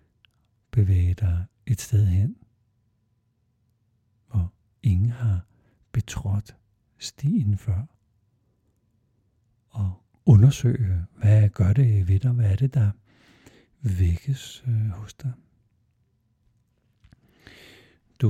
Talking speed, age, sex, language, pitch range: 85 wpm, 60-79, male, Danish, 105-120 Hz